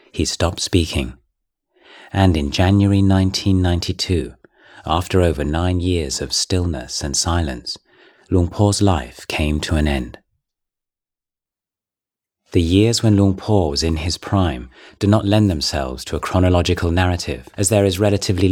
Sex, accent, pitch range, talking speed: male, British, 75-100 Hz, 140 wpm